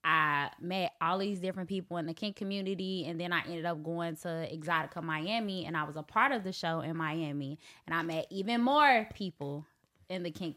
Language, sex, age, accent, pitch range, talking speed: English, female, 10-29, American, 160-200 Hz, 215 wpm